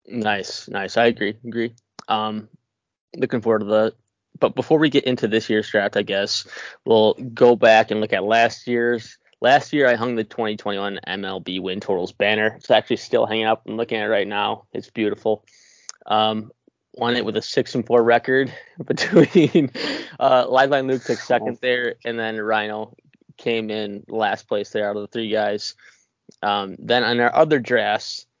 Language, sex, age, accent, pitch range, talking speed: English, male, 20-39, American, 105-120 Hz, 180 wpm